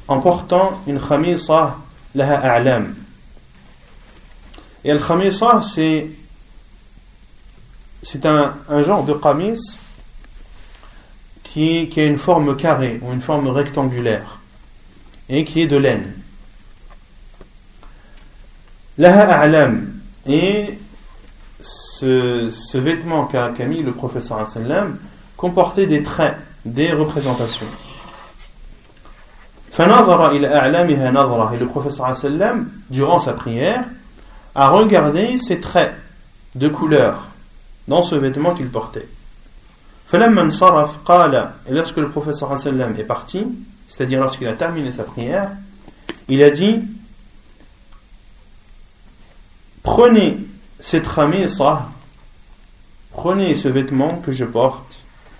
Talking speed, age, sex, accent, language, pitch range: 95 wpm, 40-59, male, French, French, 130-175 Hz